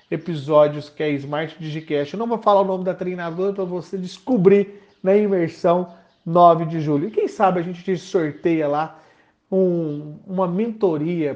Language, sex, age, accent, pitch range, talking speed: Portuguese, male, 40-59, Brazilian, 150-200 Hz, 165 wpm